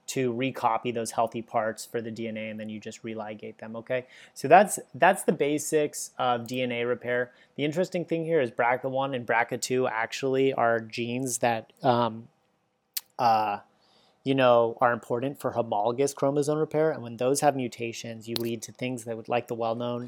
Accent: American